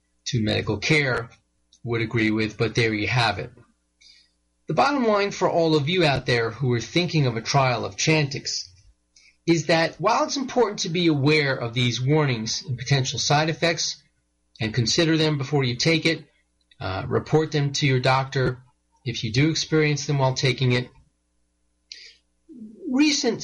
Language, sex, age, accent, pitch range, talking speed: English, male, 30-49, American, 115-160 Hz, 165 wpm